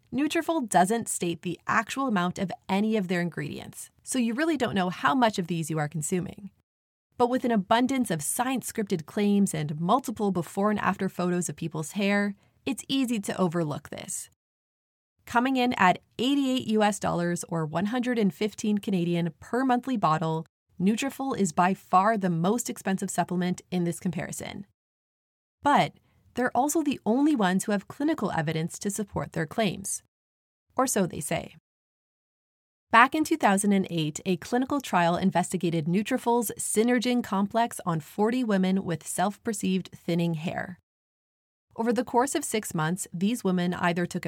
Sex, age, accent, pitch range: female, 30-49, American, 175-235 Hz